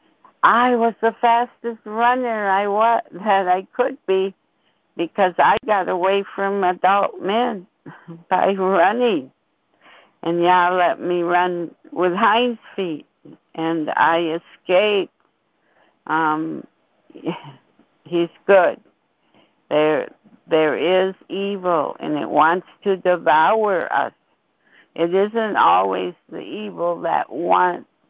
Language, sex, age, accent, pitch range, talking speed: English, female, 60-79, American, 160-195 Hz, 110 wpm